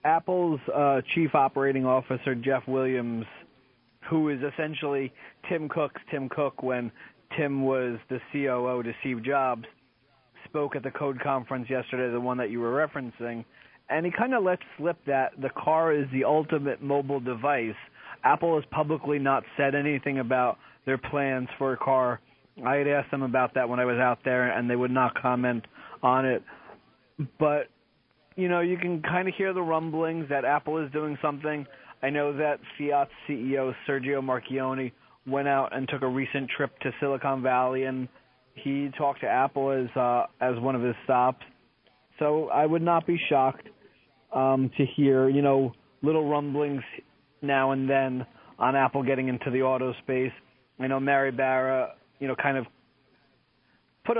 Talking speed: 170 wpm